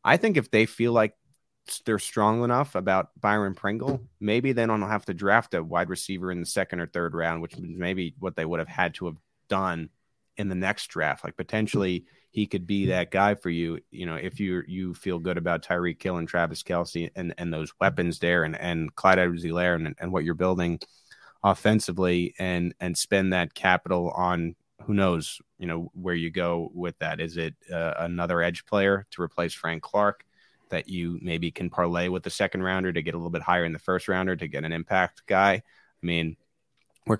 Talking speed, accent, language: 210 wpm, American, English